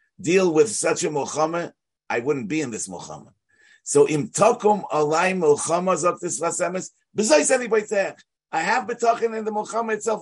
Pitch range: 155-210 Hz